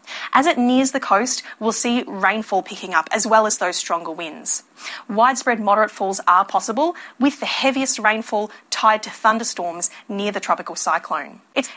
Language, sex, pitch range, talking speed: Filipino, female, 150-215 Hz, 170 wpm